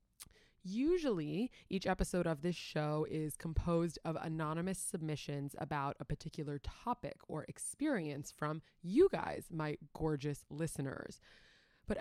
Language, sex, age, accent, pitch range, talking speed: English, female, 20-39, American, 150-215 Hz, 120 wpm